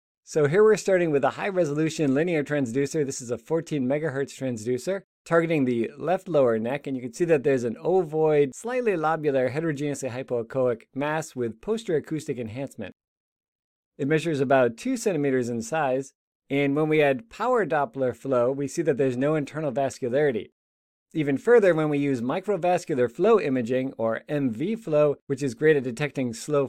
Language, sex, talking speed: English, male, 170 wpm